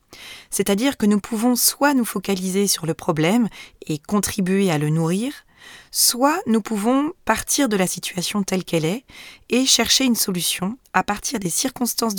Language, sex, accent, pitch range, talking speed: French, female, French, 170-225 Hz, 160 wpm